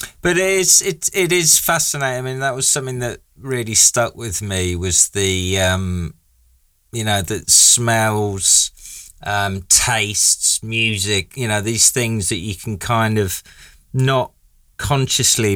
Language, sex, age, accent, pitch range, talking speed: English, male, 30-49, British, 90-115 Hz, 145 wpm